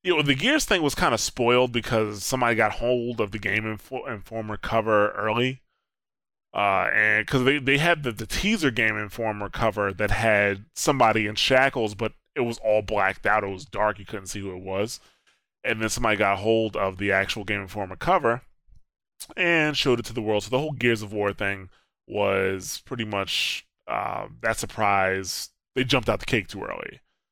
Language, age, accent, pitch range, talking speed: English, 20-39, American, 100-120 Hz, 185 wpm